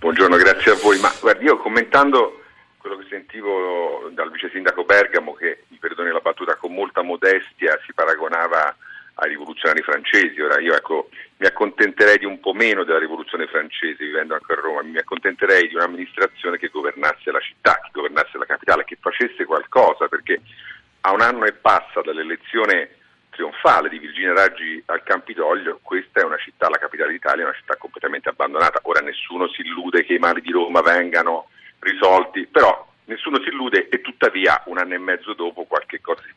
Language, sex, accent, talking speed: Italian, male, native, 180 wpm